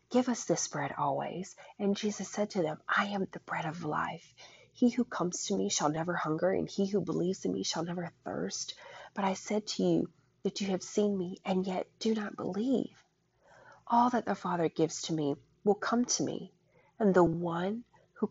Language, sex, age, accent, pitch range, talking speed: English, female, 30-49, American, 150-190 Hz, 205 wpm